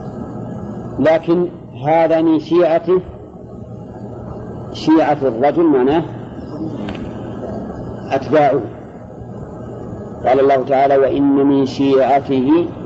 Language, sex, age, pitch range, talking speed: Arabic, male, 50-69, 135-165 Hz, 65 wpm